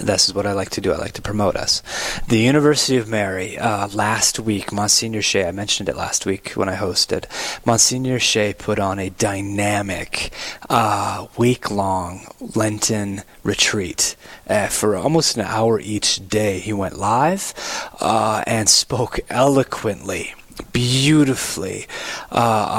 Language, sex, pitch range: English, male, 100-120 Hz